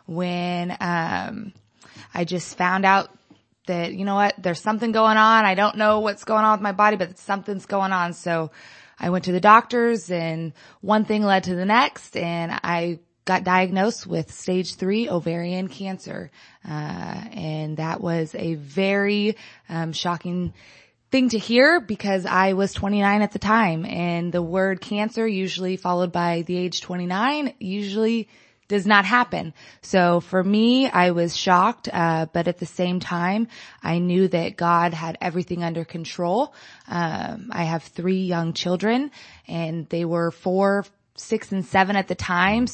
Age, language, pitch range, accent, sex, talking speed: 20-39, English, 175-210 Hz, American, female, 165 wpm